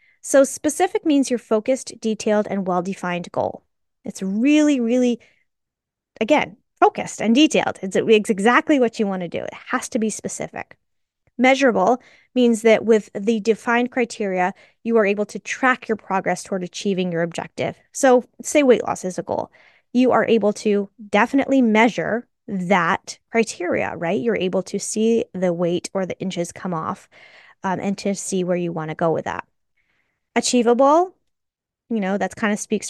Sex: female